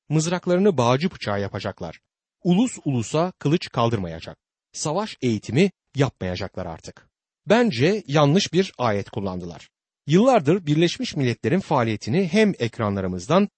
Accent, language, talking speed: native, Turkish, 100 wpm